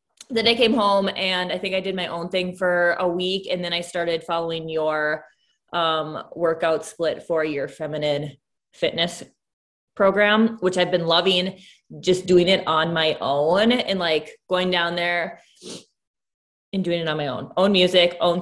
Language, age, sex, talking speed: English, 20-39, female, 175 wpm